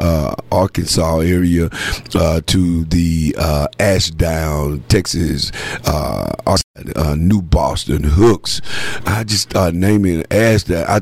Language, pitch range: English, 90-105 Hz